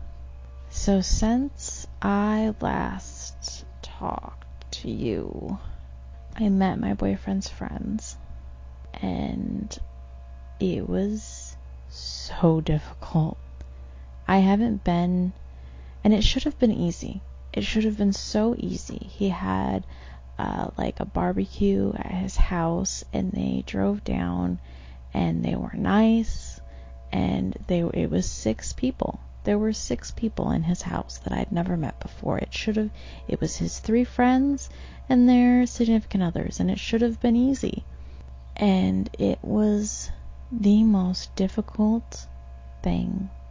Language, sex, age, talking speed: English, female, 20-39, 125 wpm